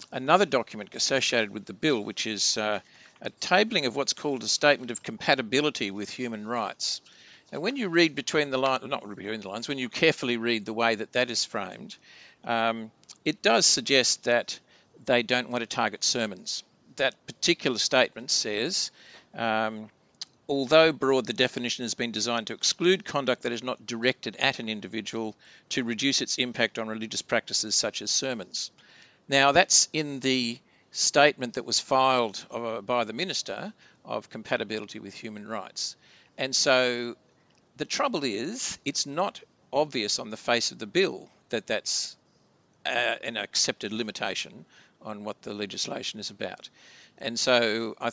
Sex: male